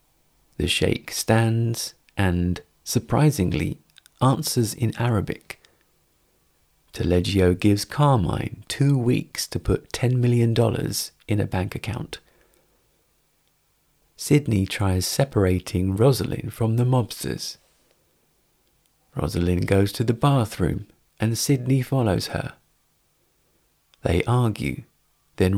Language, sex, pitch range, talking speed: English, male, 95-125 Hz, 95 wpm